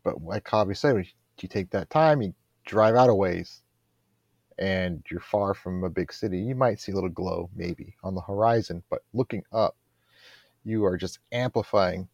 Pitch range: 95-115 Hz